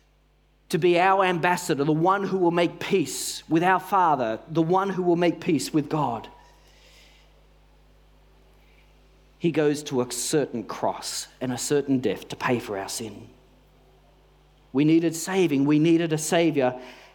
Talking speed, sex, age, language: 150 wpm, male, 40-59, English